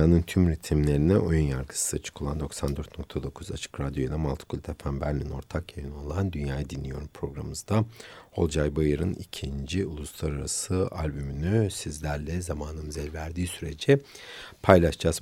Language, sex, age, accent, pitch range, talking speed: Turkish, male, 60-79, native, 75-100 Hz, 110 wpm